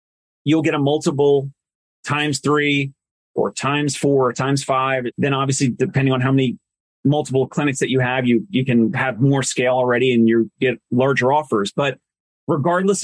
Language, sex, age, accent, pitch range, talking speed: English, male, 30-49, American, 130-160 Hz, 170 wpm